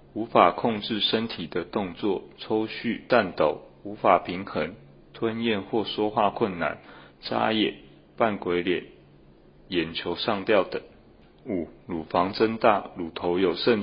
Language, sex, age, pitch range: Chinese, male, 30-49, 95-115 Hz